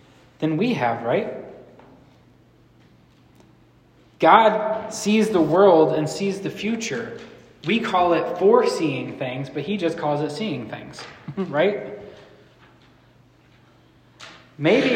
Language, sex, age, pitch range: English, male, 20-39, 130-165 Hz